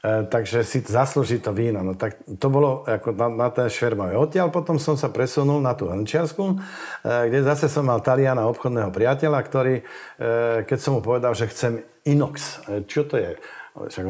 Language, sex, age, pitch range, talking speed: Slovak, male, 50-69, 110-130 Hz, 175 wpm